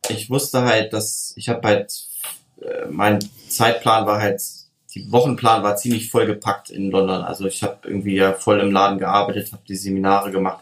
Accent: German